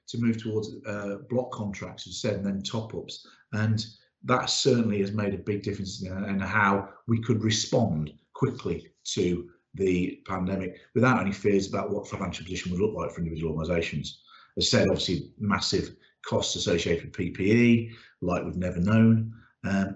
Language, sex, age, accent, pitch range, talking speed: English, male, 40-59, British, 95-115 Hz, 165 wpm